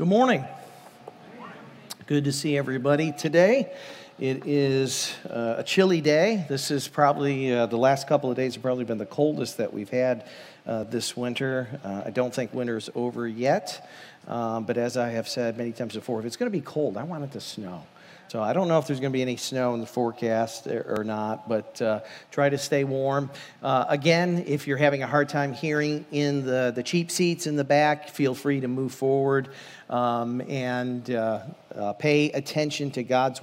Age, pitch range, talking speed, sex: 50-69, 125-155 Hz, 205 wpm, male